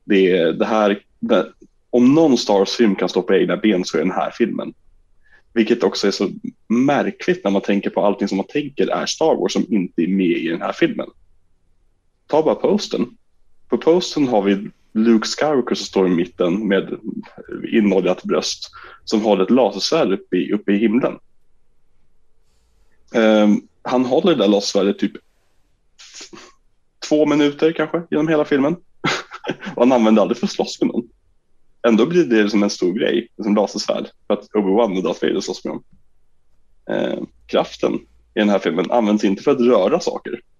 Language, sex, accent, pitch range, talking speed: Swedish, male, Norwegian, 95-120 Hz, 170 wpm